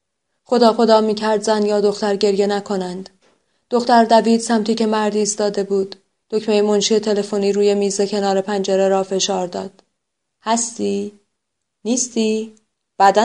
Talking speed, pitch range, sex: 125 wpm, 195-235 Hz, female